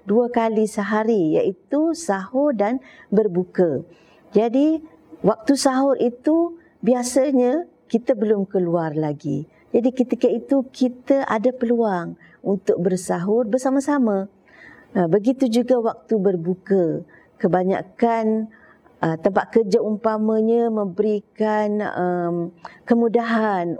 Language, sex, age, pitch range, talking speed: Malay, female, 50-69, 190-235 Hz, 90 wpm